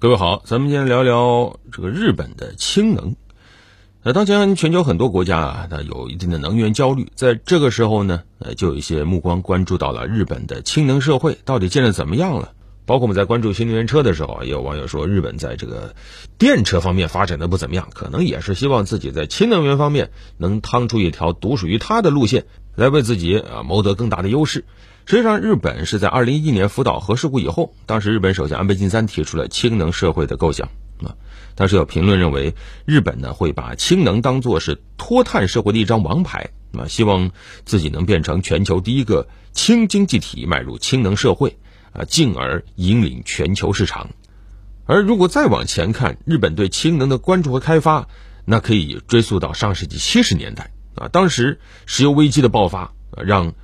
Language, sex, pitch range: Chinese, male, 95-130 Hz